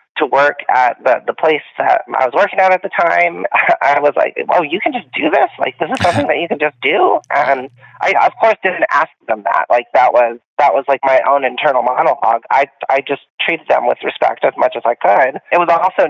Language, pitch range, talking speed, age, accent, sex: English, 135-180 Hz, 240 wpm, 30-49, American, male